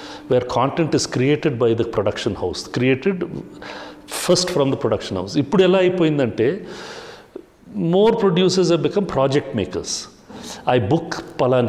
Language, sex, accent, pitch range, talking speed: English, male, Indian, 120-175 Hz, 120 wpm